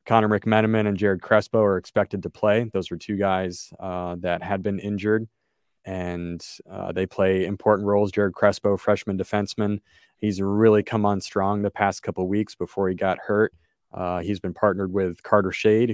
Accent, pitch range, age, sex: American, 95-110 Hz, 20-39, male